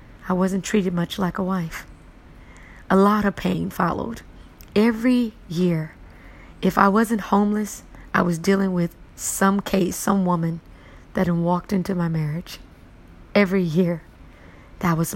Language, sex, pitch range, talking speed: English, female, 165-200 Hz, 145 wpm